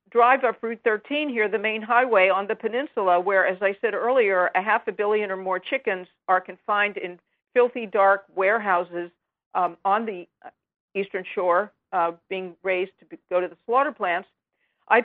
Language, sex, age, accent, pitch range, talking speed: English, female, 50-69, American, 190-230 Hz, 175 wpm